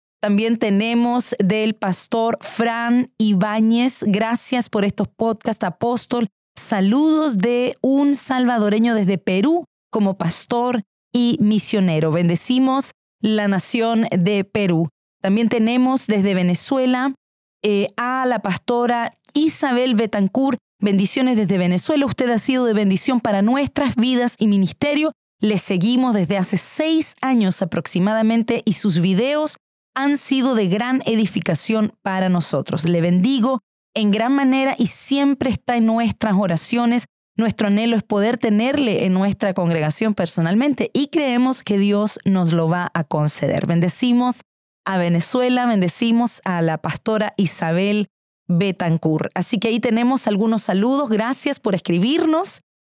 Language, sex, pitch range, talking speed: Spanish, female, 195-250 Hz, 130 wpm